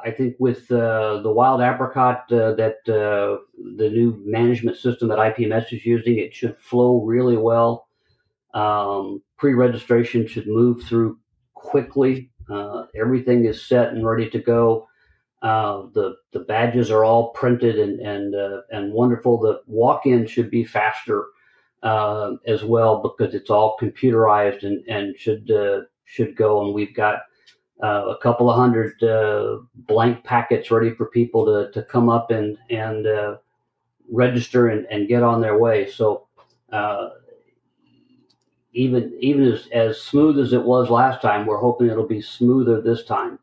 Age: 50-69